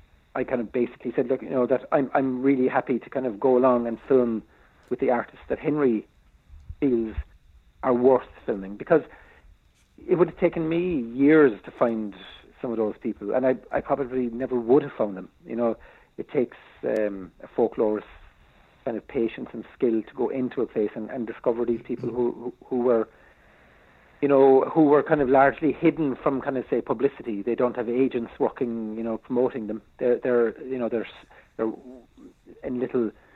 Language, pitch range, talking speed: English, 105-135 Hz, 190 wpm